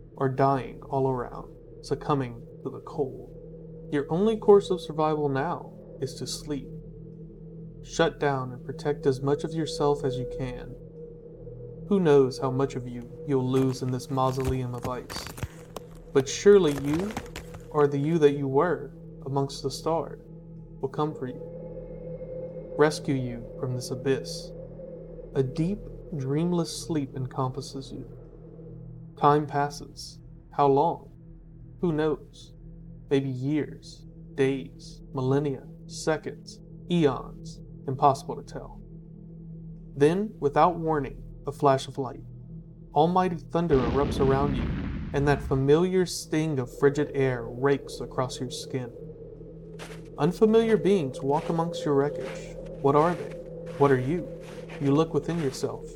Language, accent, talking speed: English, American, 130 wpm